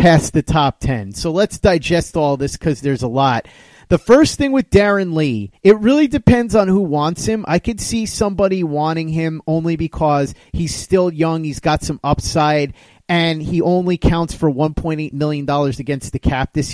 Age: 30-49